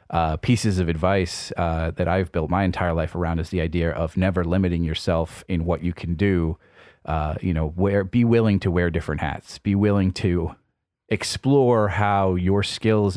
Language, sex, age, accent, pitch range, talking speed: English, male, 30-49, American, 85-100 Hz, 180 wpm